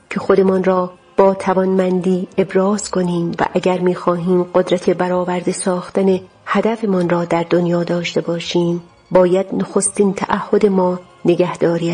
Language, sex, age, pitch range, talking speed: Persian, female, 40-59, 180-200 Hz, 120 wpm